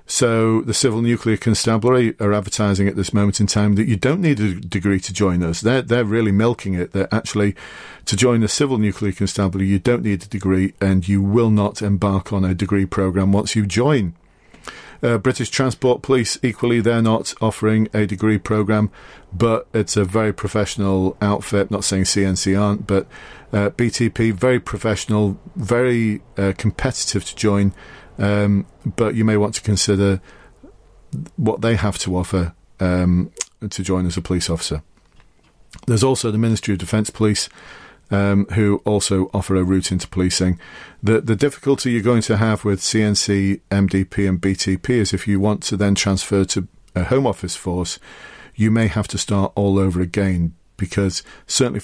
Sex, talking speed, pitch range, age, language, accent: male, 170 wpm, 95-110 Hz, 40-59, English, British